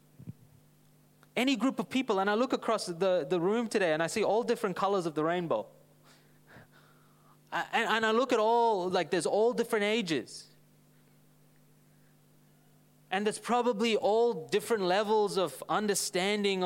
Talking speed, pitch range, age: 150 wpm, 180-235 Hz, 20-39